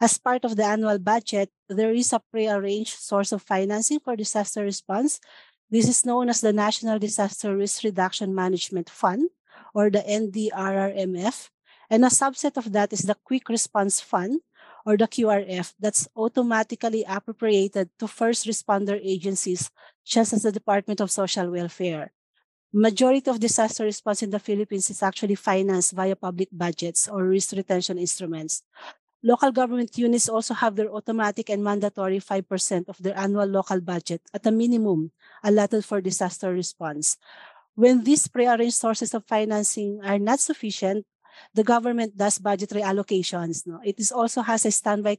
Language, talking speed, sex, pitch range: English, 155 wpm, female, 195-230 Hz